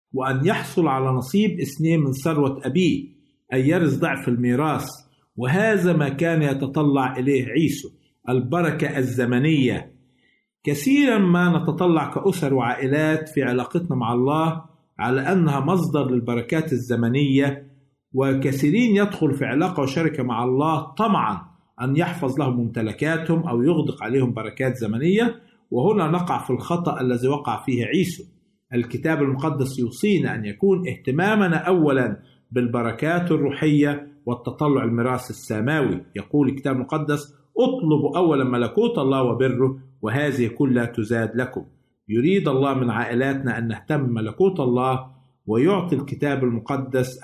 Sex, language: male, Arabic